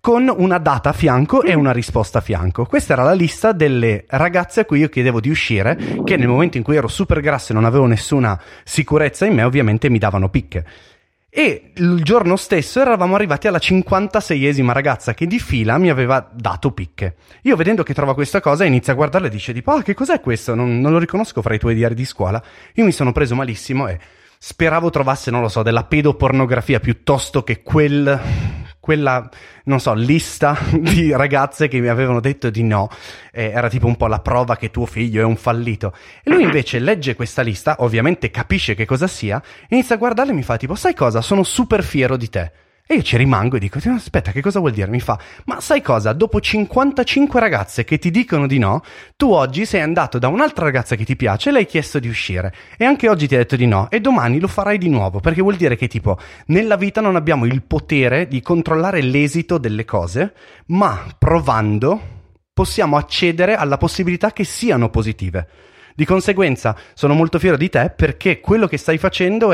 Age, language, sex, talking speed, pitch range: 30-49, Italian, male, 205 wpm, 115-175 Hz